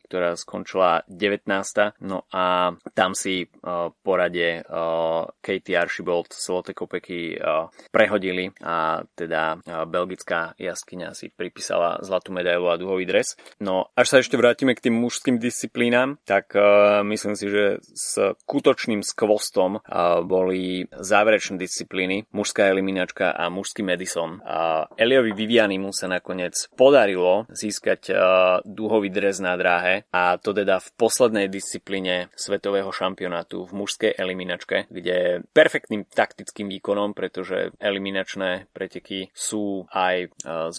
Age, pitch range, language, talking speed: 20-39, 90-100 Hz, Slovak, 120 wpm